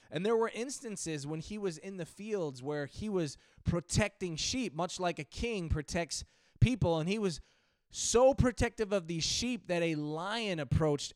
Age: 20-39